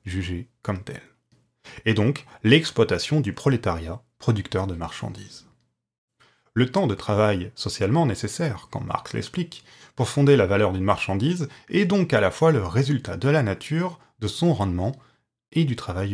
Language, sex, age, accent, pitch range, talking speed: French, male, 30-49, French, 100-135 Hz, 155 wpm